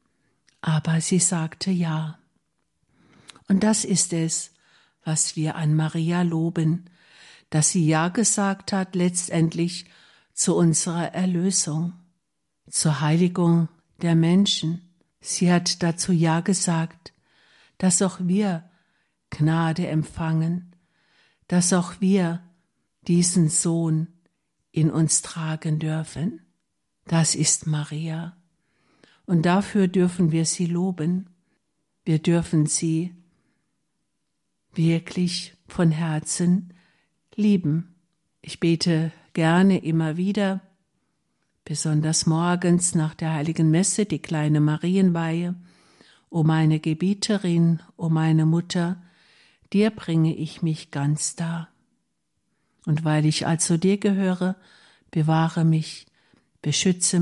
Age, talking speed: 60-79, 100 wpm